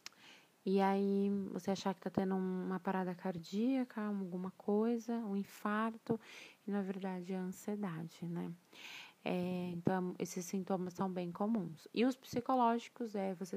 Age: 20-39